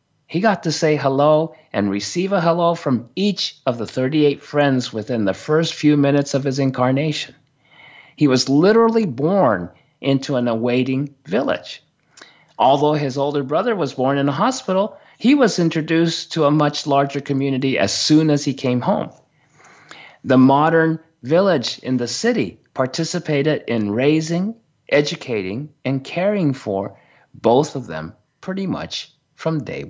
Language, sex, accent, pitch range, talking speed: English, male, American, 135-165 Hz, 150 wpm